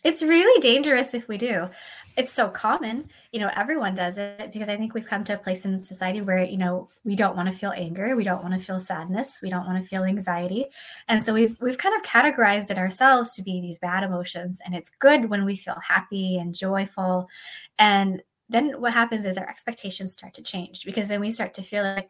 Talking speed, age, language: 230 wpm, 20-39, English